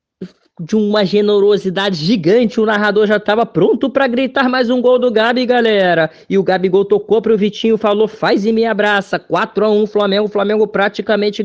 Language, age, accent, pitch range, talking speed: Portuguese, 20-39, Brazilian, 200-225 Hz, 180 wpm